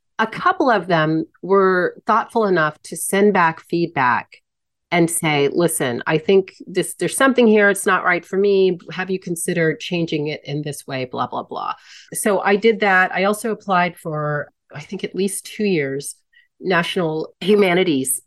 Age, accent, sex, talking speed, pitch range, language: 30-49, American, female, 170 wpm, 160-200 Hz, English